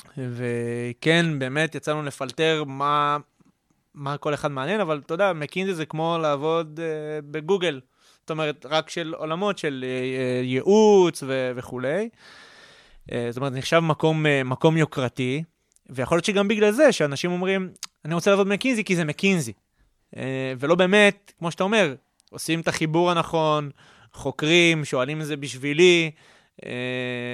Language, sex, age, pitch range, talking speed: Hebrew, male, 20-39, 135-185 Hz, 145 wpm